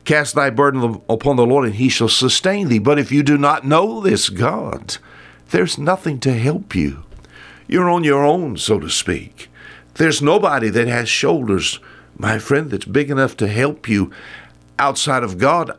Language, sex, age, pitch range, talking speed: English, male, 60-79, 95-145 Hz, 180 wpm